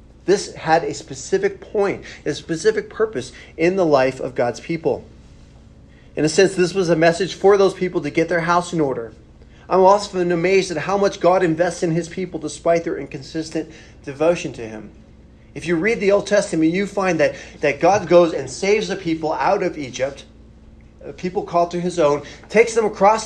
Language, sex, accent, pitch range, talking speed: English, male, American, 155-200 Hz, 195 wpm